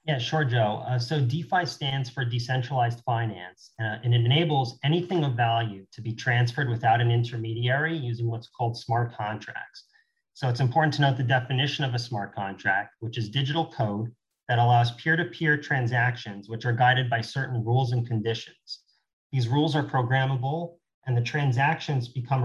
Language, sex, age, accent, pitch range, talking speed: English, male, 30-49, American, 120-140 Hz, 170 wpm